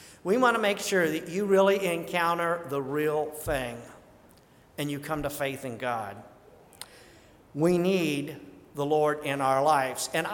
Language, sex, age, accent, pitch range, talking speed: English, male, 50-69, American, 155-200 Hz, 155 wpm